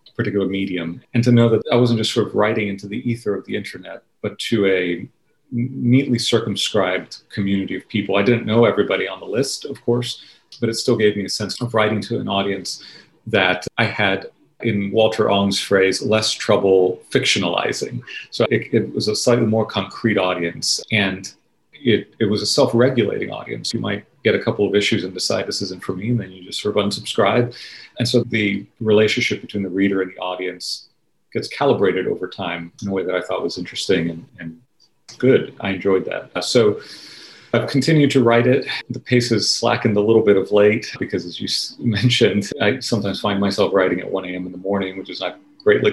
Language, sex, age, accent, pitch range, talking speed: English, male, 40-59, American, 95-120 Hz, 200 wpm